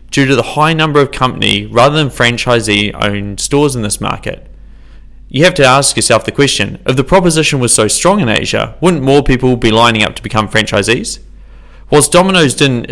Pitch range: 105-135 Hz